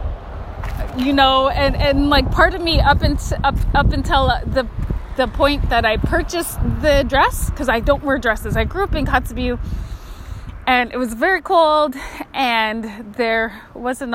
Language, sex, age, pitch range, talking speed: English, female, 20-39, 220-285 Hz, 165 wpm